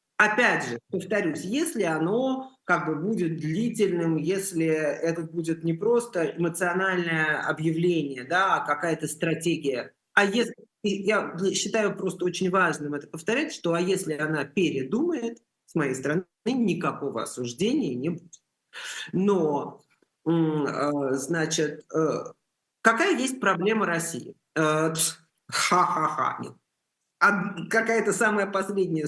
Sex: male